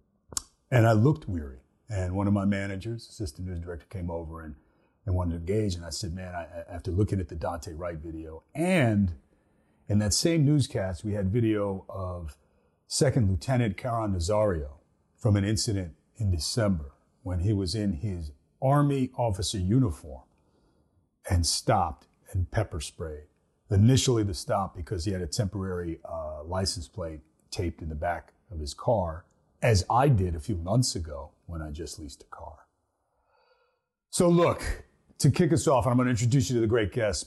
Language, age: English, 40-59